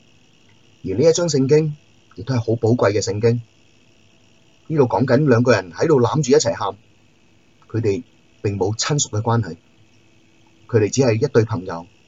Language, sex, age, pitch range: Chinese, male, 30-49, 110-120 Hz